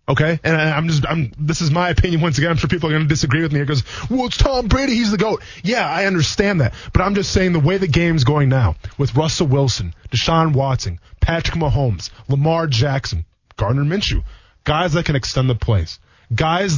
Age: 20-39